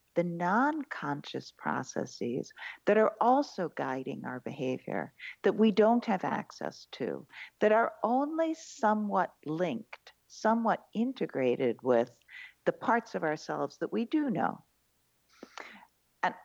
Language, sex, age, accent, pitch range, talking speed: English, female, 50-69, American, 155-230 Hz, 115 wpm